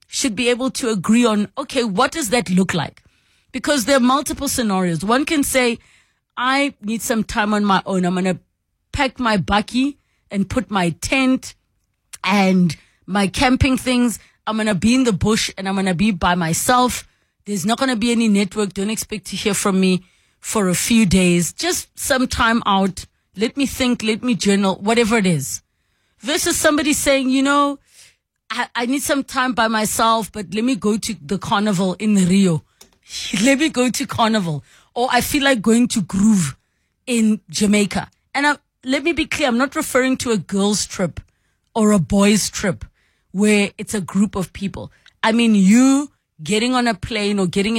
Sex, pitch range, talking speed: female, 195-255 Hz, 190 wpm